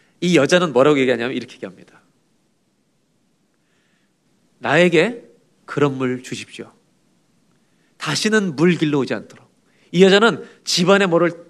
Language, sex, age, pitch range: Korean, male, 40-59, 165-235 Hz